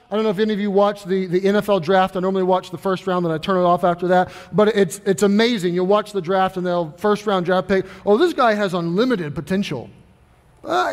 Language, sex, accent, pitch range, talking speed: English, male, American, 195-255 Hz, 255 wpm